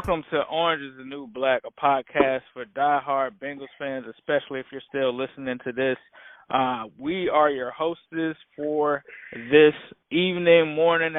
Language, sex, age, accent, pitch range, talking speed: English, male, 20-39, American, 135-160 Hz, 155 wpm